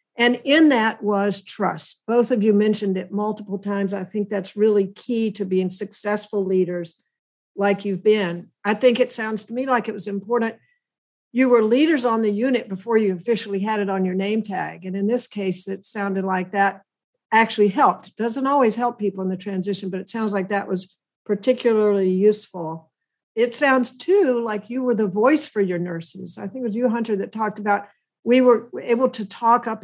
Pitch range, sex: 195-230 Hz, female